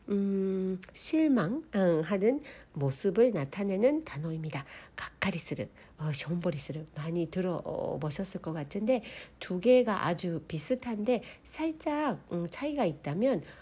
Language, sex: Korean, female